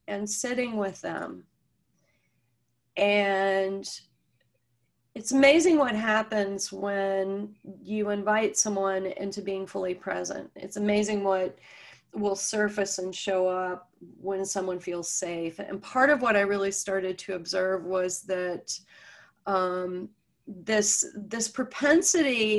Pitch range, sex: 185-220 Hz, female